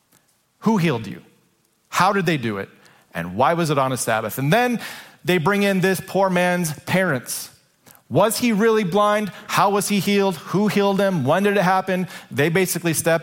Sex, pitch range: male, 130-180 Hz